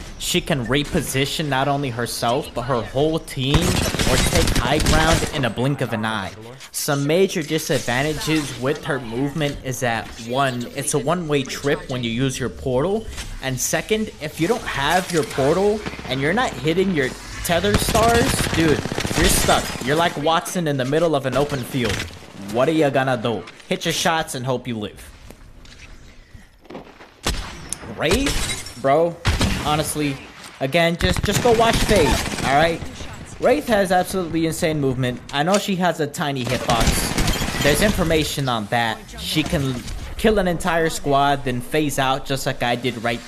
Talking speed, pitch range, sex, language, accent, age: 165 wpm, 120-160 Hz, male, English, American, 20-39